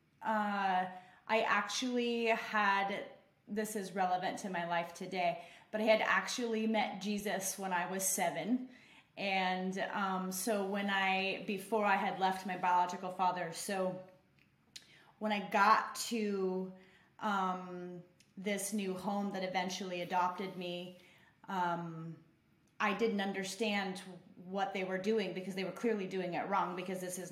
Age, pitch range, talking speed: 30-49, 180-210 Hz, 140 wpm